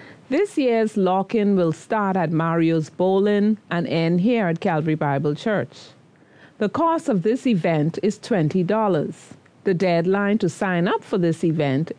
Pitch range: 175-245 Hz